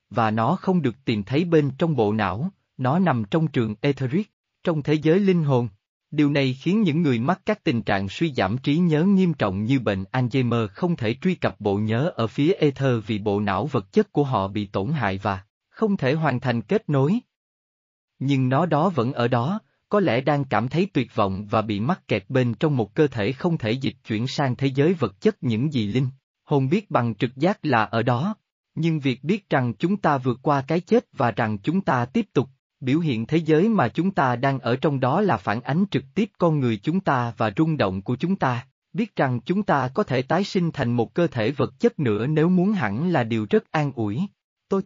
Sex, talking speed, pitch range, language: male, 230 wpm, 115-170 Hz, Vietnamese